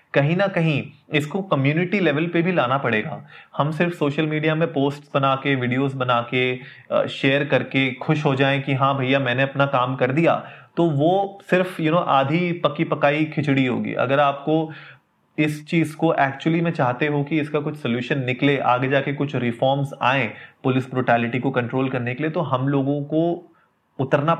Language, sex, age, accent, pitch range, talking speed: Hindi, male, 30-49, native, 130-155 Hz, 190 wpm